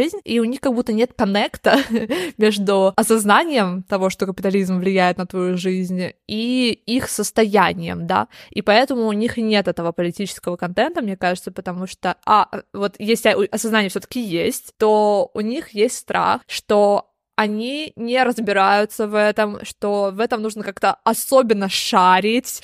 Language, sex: Russian, female